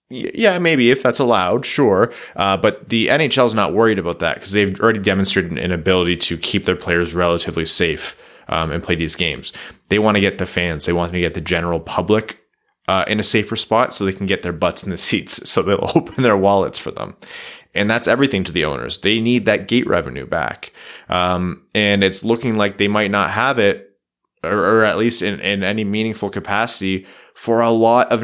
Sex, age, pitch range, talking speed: male, 20-39, 90-115 Hz, 215 wpm